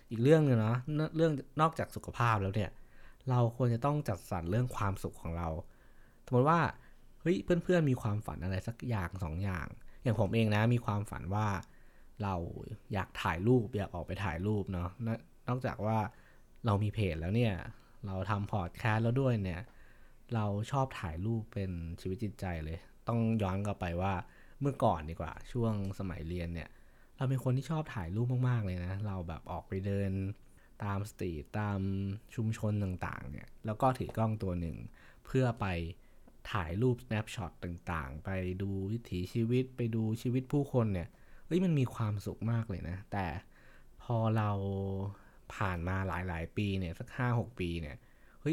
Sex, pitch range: male, 95-120 Hz